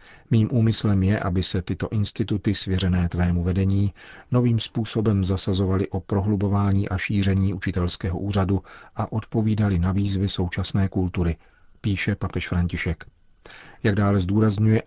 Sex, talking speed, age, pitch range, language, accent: male, 125 wpm, 40-59, 90-100 Hz, Czech, native